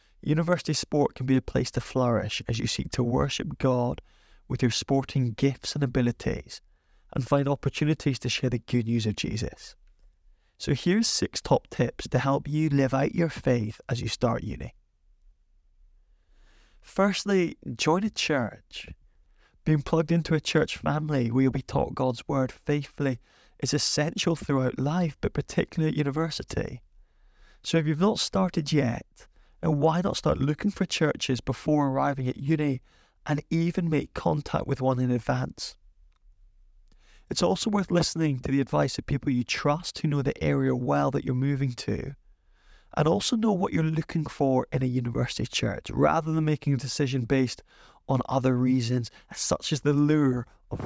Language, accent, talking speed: English, British, 165 wpm